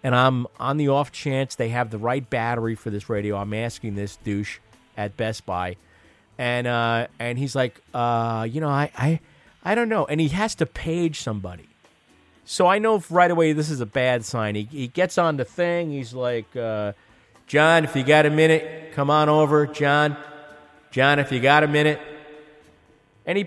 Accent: American